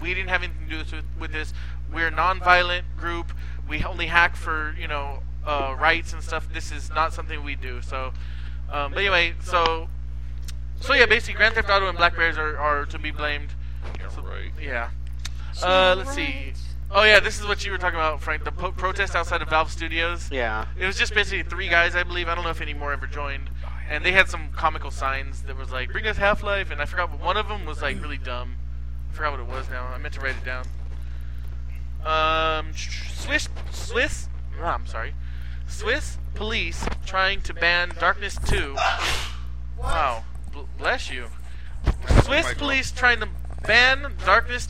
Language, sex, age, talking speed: English, male, 20-39, 195 wpm